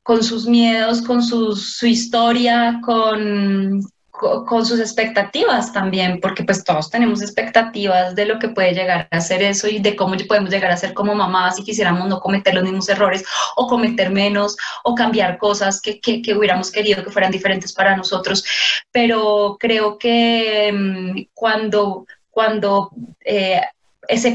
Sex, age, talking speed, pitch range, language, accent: female, 20-39, 155 wpm, 195-230 Hz, Spanish, Colombian